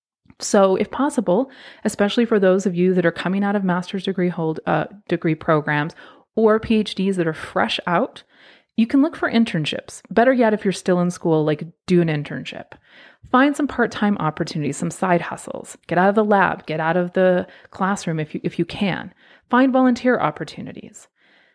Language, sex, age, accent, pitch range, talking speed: English, female, 30-49, American, 170-230 Hz, 185 wpm